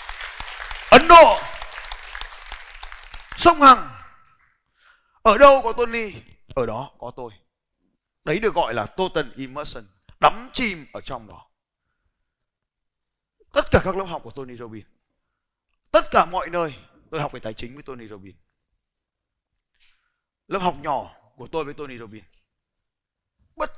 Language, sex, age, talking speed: Vietnamese, male, 30-49, 130 wpm